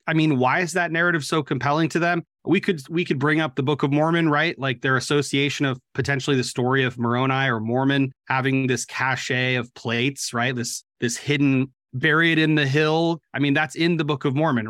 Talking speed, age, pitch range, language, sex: 215 wpm, 30-49, 125-160 Hz, English, male